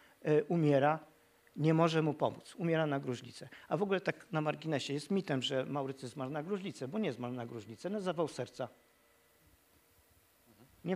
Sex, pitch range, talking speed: male, 135-155 Hz, 170 wpm